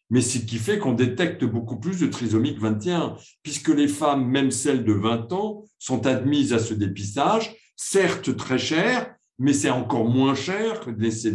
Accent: French